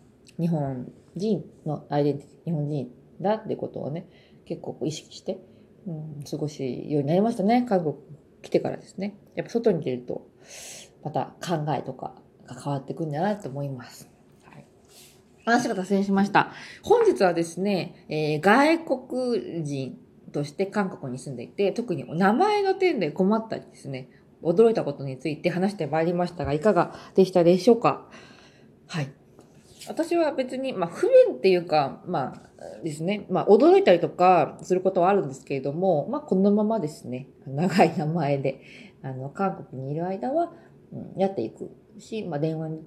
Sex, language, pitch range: female, Japanese, 145-210 Hz